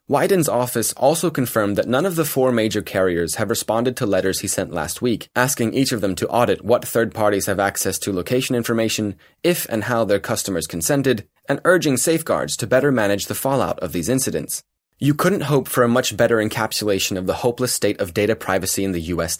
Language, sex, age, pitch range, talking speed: English, male, 30-49, 110-145 Hz, 210 wpm